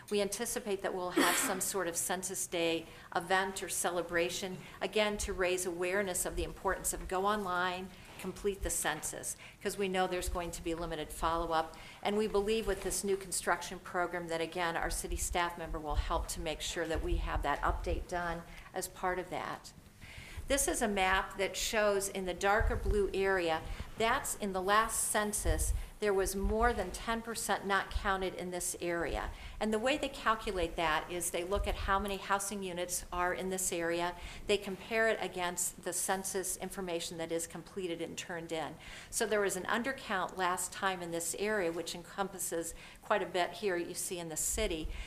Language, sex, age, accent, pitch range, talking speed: English, female, 50-69, American, 175-200 Hz, 190 wpm